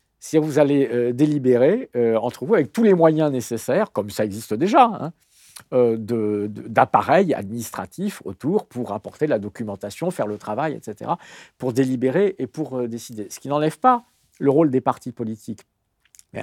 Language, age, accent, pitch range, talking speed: French, 50-69, French, 125-185 Hz, 170 wpm